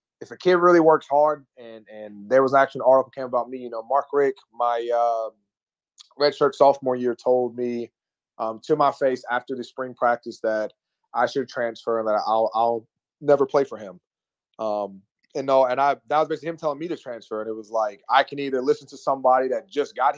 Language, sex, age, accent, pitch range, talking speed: English, male, 20-39, American, 120-145 Hz, 220 wpm